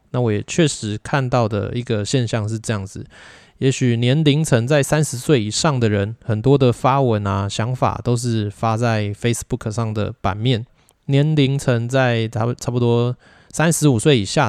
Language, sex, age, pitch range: Chinese, male, 20-39, 105-135 Hz